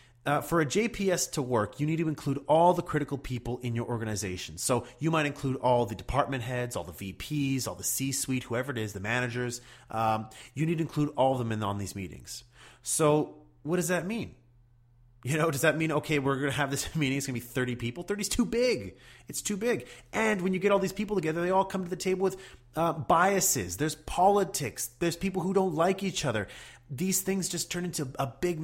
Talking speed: 235 wpm